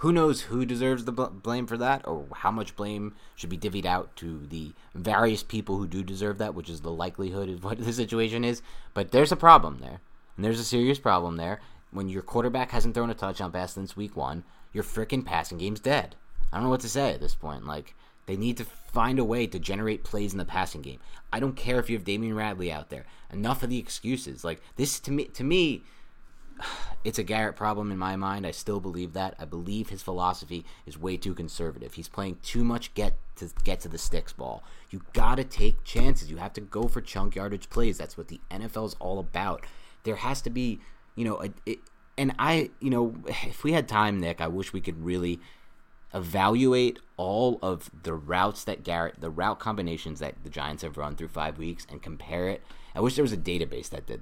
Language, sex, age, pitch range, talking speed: English, male, 30-49, 85-115 Hz, 225 wpm